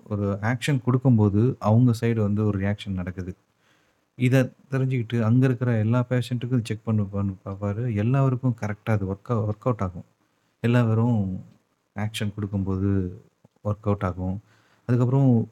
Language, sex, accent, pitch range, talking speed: Tamil, male, native, 100-120 Hz, 130 wpm